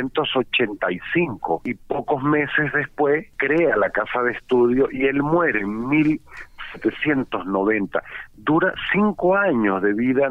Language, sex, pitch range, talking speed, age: Spanish, male, 120-155 Hz, 110 wpm, 50-69